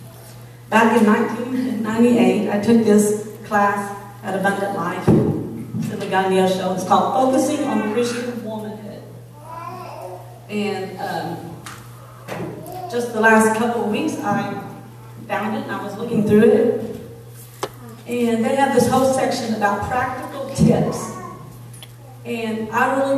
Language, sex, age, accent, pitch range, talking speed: English, female, 40-59, American, 200-245 Hz, 130 wpm